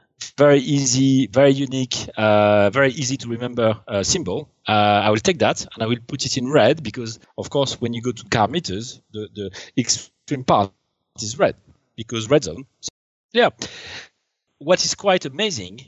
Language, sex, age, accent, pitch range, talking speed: English, male, 40-59, French, 110-140 Hz, 175 wpm